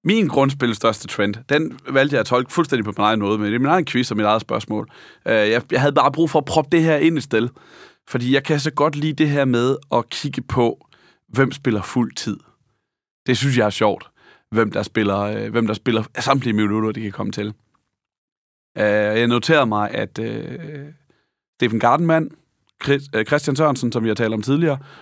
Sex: male